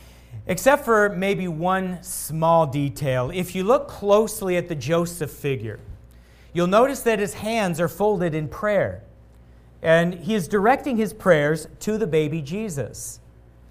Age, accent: 40-59, American